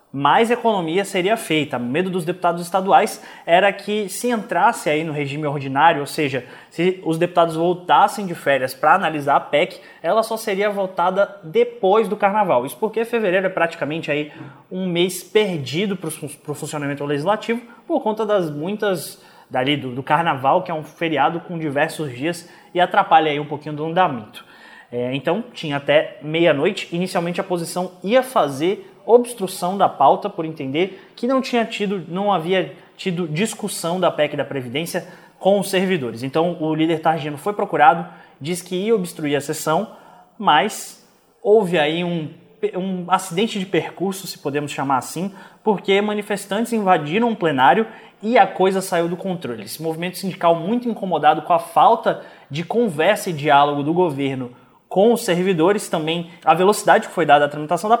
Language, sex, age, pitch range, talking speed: Portuguese, male, 20-39, 155-200 Hz, 170 wpm